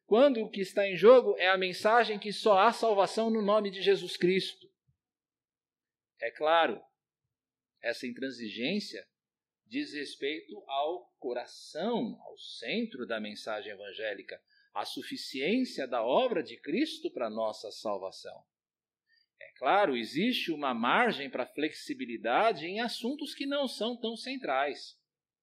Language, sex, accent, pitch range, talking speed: Portuguese, male, Brazilian, 190-295 Hz, 130 wpm